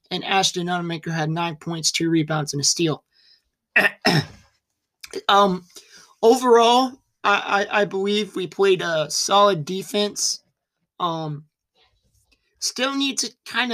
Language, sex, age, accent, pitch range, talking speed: English, male, 20-39, American, 165-200 Hz, 120 wpm